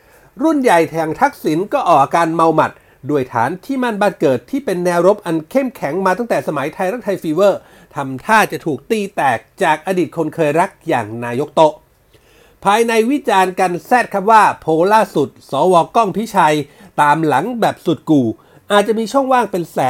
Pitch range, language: 155-225 Hz, Thai